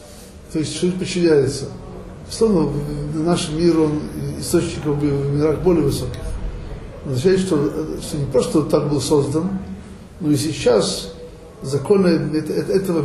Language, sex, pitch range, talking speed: Russian, male, 140-175 Hz, 125 wpm